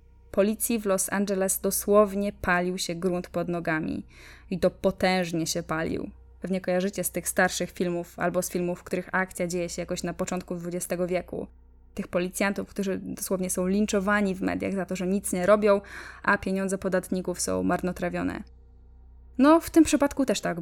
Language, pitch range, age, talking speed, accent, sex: Polish, 175-205 Hz, 10-29, 170 wpm, native, female